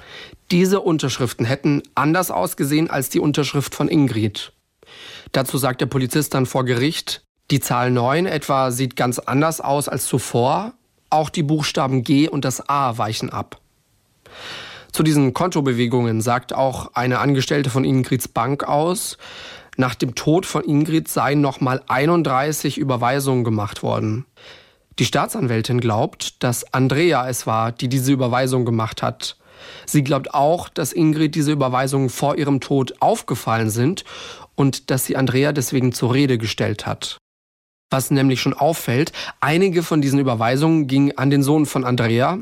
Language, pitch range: German, 125-150 Hz